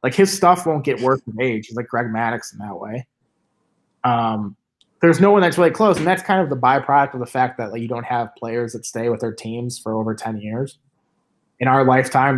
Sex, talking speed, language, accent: male, 235 wpm, English, American